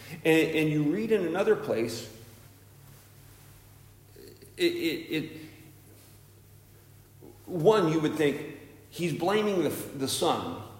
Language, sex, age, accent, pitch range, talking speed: English, male, 50-69, American, 120-155 Hz, 105 wpm